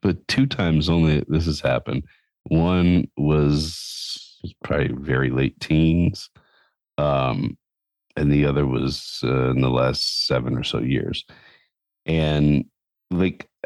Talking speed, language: 125 wpm, English